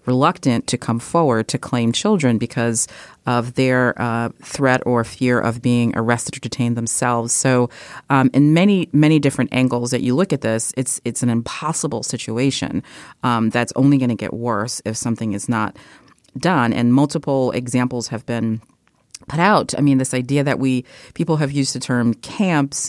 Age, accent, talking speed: 30-49, American, 180 wpm